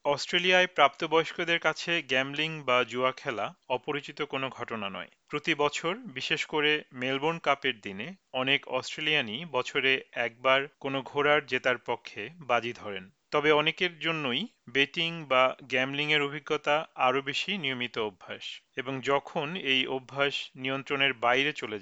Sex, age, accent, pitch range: male, 40-59, native, 130-160 Hz